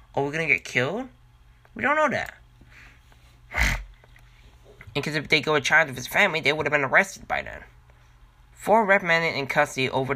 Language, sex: English, male